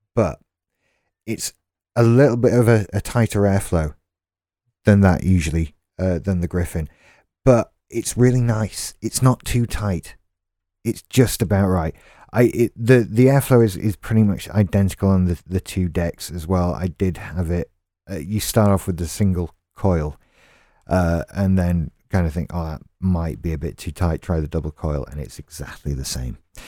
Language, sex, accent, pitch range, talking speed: English, male, British, 85-110 Hz, 180 wpm